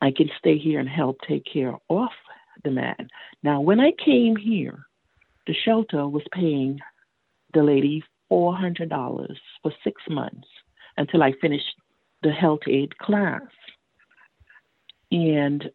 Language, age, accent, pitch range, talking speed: English, 50-69, American, 140-200 Hz, 130 wpm